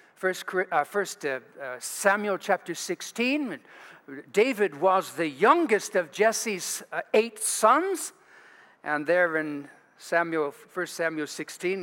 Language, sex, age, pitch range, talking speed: English, male, 60-79, 160-220 Hz, 125 wpm